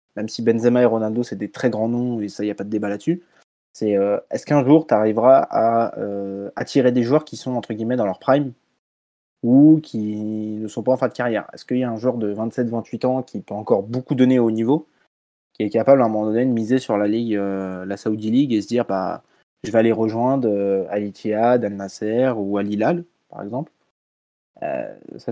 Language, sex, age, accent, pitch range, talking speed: French, male, 20-39, French, 105-125 Hz, 230 wpm